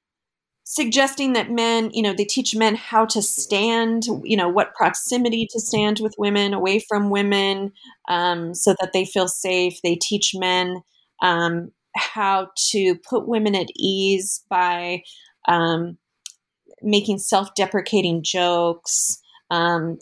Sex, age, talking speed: female, 30-49, 130 wpm